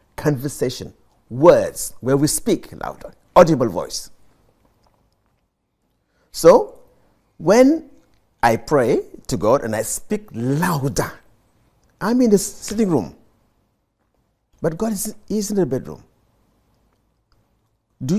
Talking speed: 100 wpm